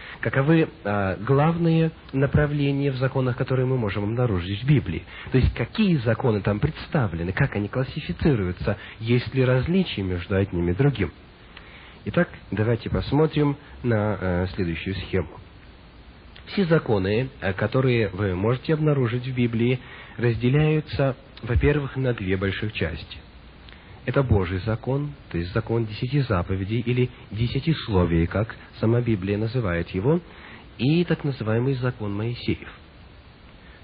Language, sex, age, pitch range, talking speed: English, male, 40-59, 95-135 Hz, 120 wpm